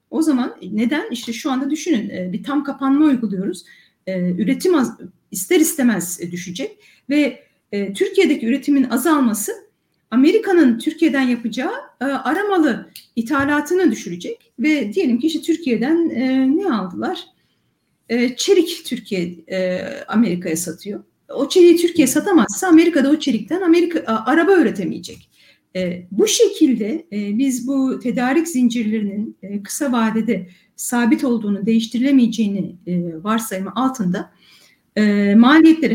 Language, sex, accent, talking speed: Turkish, female, native, 110 wpm